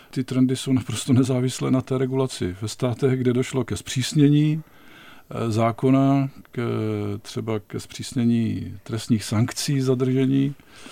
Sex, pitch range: male, 105-130 Hz